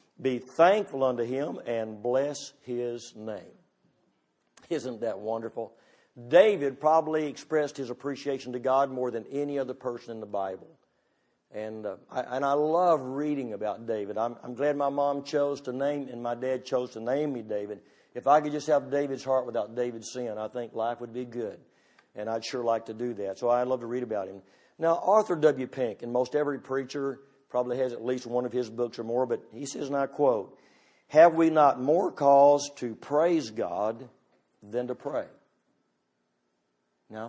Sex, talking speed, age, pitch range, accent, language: male, 185 wpm, 50-69, 120-140 Hz, American, English